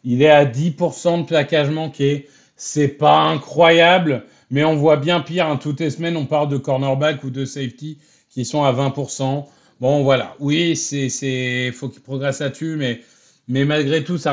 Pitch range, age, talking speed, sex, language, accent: 140-190 Hz, 30-49, 180 wpm, male, French, French